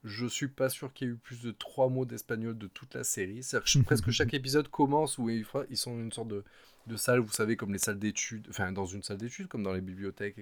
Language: French